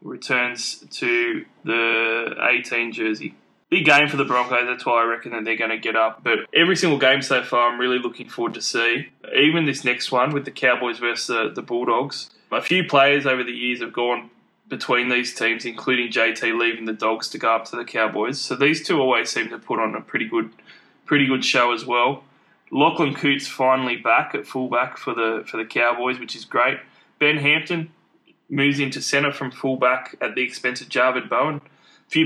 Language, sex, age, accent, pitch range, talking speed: English, male, 20-39, Australian, 120-140 Hz, 205 wpm